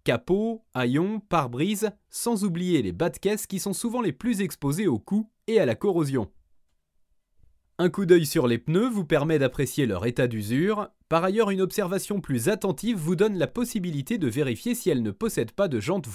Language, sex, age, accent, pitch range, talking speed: French, male, 30-49, French, 125-195 Hz, 195 wpm